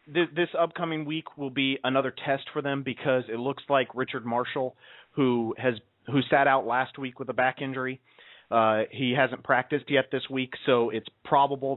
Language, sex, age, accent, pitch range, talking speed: English, male, 30-49, American, 120-140 Hz, 185 wpm